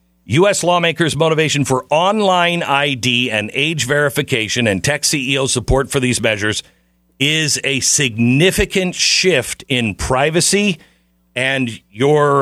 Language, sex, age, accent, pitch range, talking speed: English, male, 50-69, American, 95-150 Hz, 115 wpm